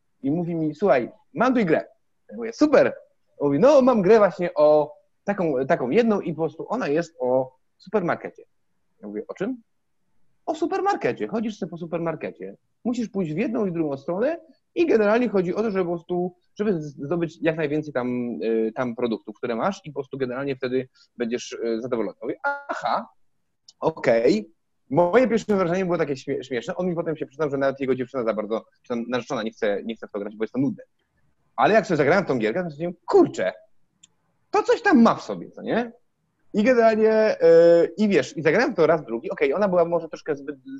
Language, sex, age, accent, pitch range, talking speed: Polish, male, 30-49, native, 145-225 Hz, 205 wpm